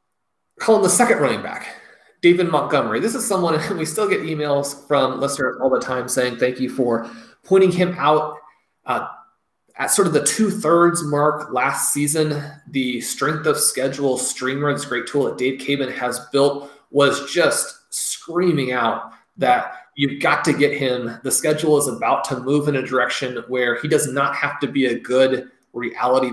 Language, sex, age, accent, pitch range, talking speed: English, male, 20-39, American, 130-160 Hz, 175 wpm